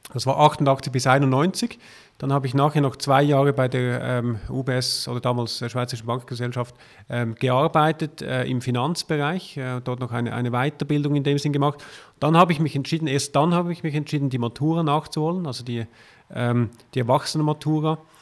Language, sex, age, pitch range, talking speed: German, male, 40-59, 125-155 Hz, 180 wpm